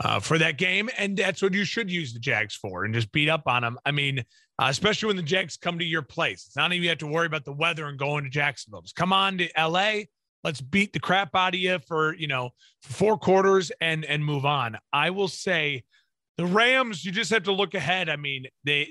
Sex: male